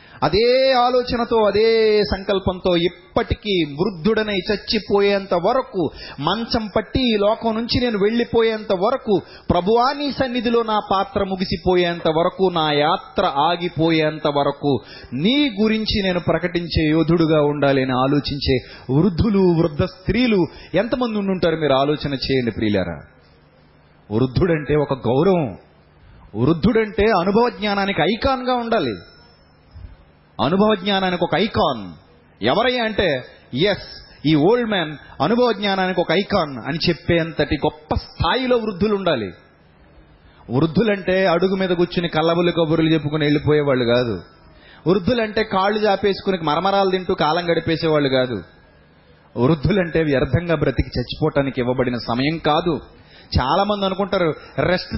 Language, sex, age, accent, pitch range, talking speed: Telugu, male, 30-49, native, 135-200 Hz, 110 wpm